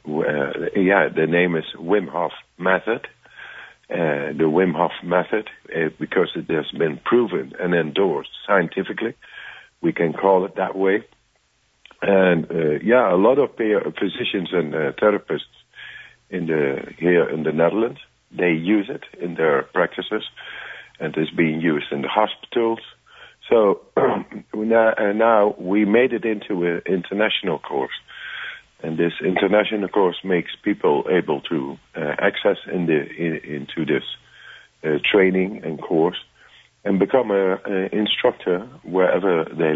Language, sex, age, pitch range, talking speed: English, male, 60-79, 80-105 Hz, 140 wpm